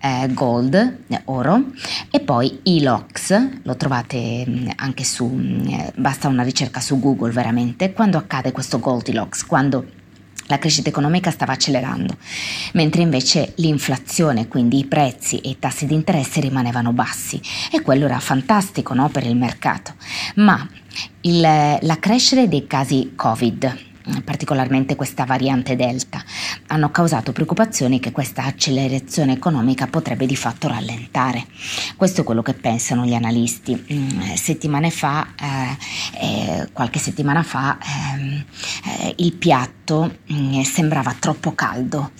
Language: Italian